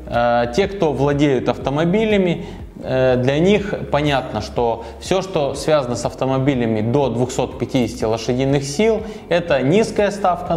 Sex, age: male, 20-39